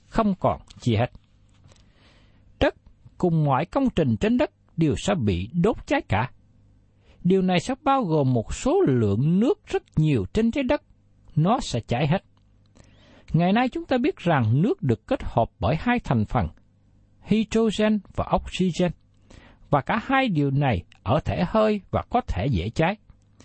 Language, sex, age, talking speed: Vietnamese, male, 60-79, 165 wpm